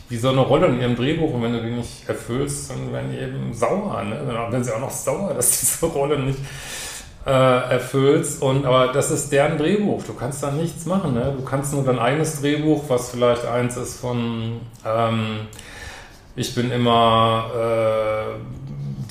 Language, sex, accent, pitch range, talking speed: German, male, German, 120-145 Hz, 185 wpm